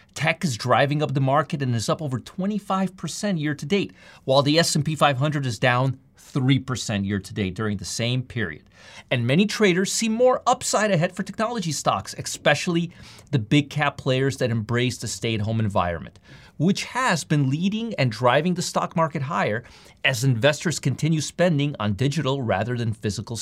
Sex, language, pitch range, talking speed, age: male, English, 115-170 Hz, 160 wpm, 30-49